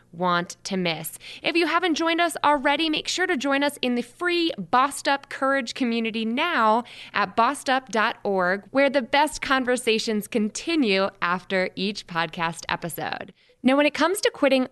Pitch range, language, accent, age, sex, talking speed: 185-265 Hz, English, American, 20-39, female, 160 wpm